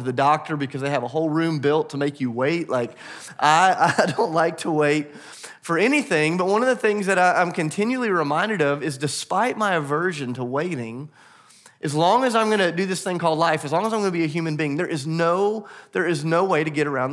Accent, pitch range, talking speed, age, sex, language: American, 150-190 Hz, 230 wpm, 30-49, male, English